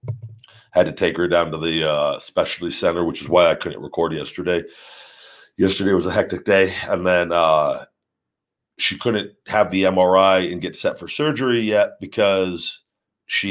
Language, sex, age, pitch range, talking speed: English, male, 50-69, 85-95 Hz, 170 wpm